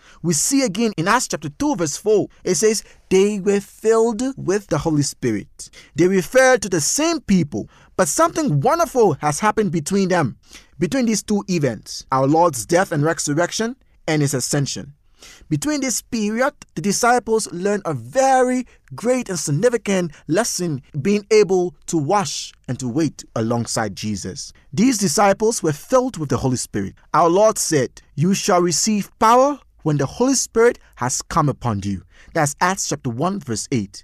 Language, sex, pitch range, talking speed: English, male, 145-235 Hz, 165 wpm